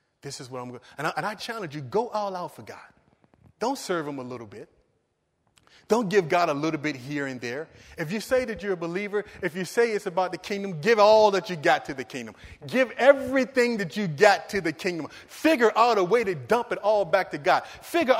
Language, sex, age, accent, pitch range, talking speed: English, male, 30-49, American, 155-215 Hz, 235 wpm